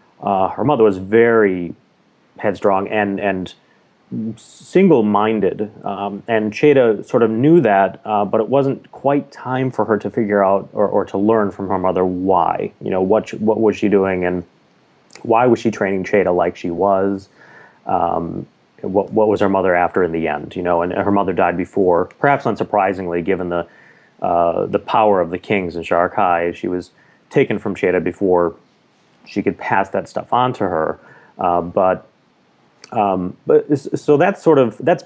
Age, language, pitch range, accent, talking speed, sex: 30-49, English, 95-120 Hz, American, 175 wpm, male